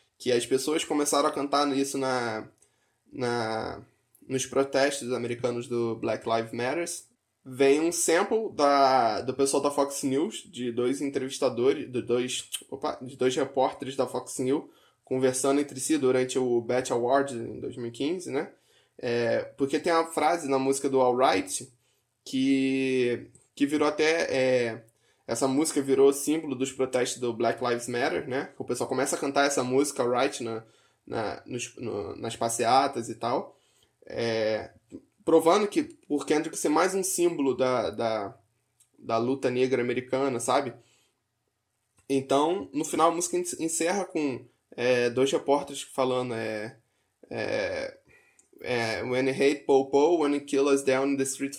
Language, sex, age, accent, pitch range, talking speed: Portuguese, male, 10-29, Brazilian, 120-140 Hz, 150 wpm